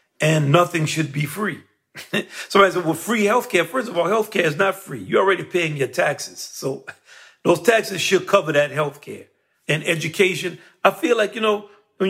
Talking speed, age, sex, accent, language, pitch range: 185 wpm, 40-59, male, American, English, 155-205 Hz